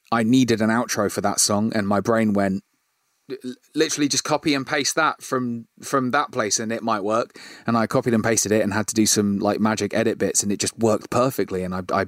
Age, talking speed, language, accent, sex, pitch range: 30-49, 240 wpm, English, British, male, 105-130 Hz